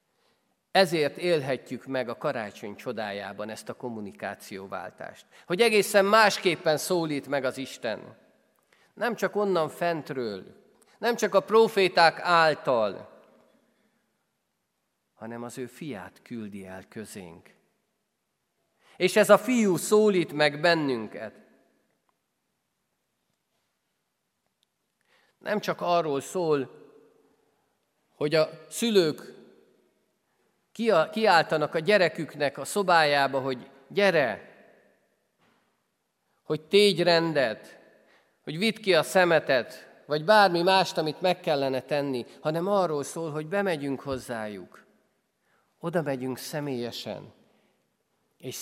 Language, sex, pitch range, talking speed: Hungarian, male, 130-190 Hz, 95 wpm